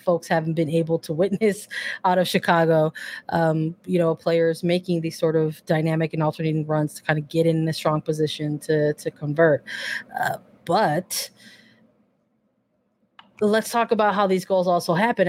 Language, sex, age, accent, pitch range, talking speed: English, female, 20-39, American, 170-200 Hz, 165 wpm